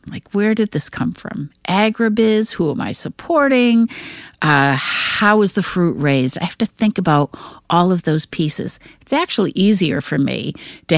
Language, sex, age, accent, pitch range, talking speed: English, female, 50-69, American, 150-210 Hz, 175 wpm